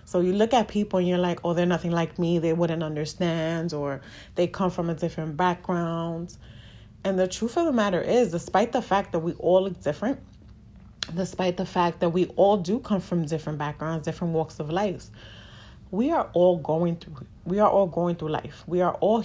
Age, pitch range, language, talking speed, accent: 20-39, 155-185 Hz, English, 210 wpm, American